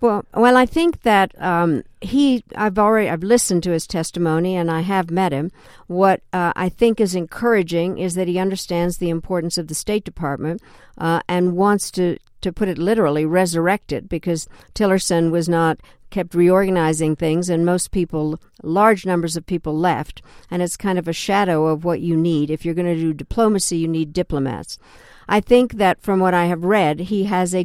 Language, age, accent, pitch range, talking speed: English, 60-79, American, 165-190 Hz, 185 wpm